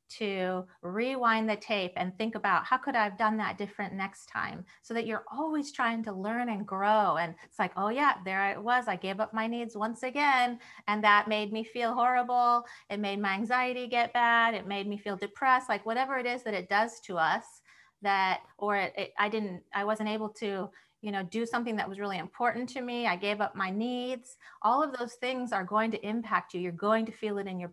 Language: English